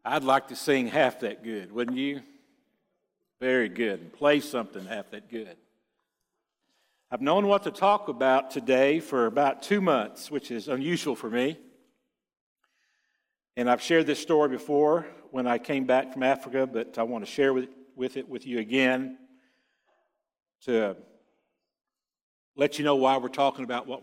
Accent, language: American, English